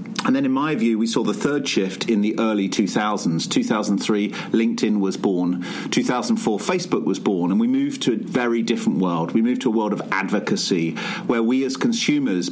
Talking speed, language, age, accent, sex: 195 wpm, English, 40-59, British, male